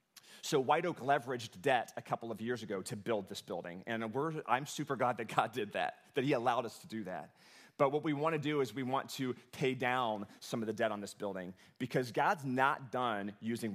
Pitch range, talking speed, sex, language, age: 120-150 Hz, 235 wpm, male, English, 30-49